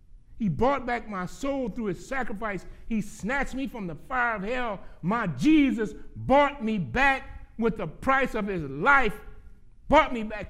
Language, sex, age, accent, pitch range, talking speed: English, male, 60-79, American, 120-185 Hz, 170 wpm